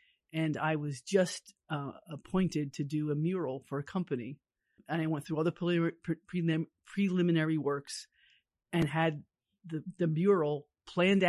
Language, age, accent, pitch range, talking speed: English, 50-69, American, 145-170 Hz, 145 wpm